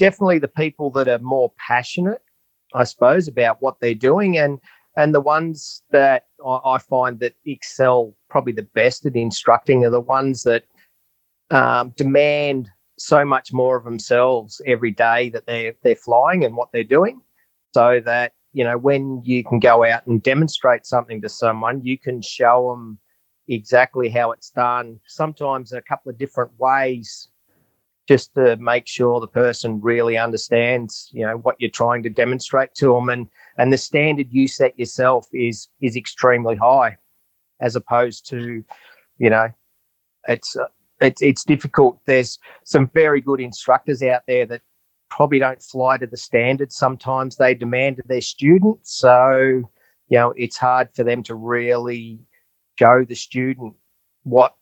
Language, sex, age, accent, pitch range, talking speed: English, male, 40-59, Australian, 120-135 Hz, 165 wpm